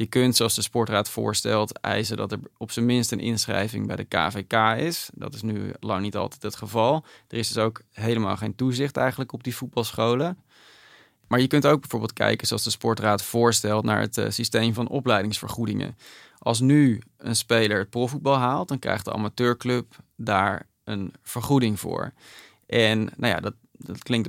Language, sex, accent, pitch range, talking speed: Dutch, male, Dutch, 110-125 Hz, 185 wpm